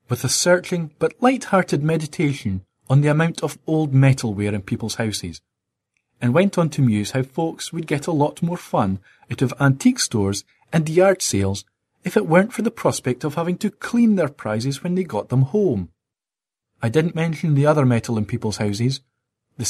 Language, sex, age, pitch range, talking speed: English, male, 30-49, 120-180 Hz, 190 wpm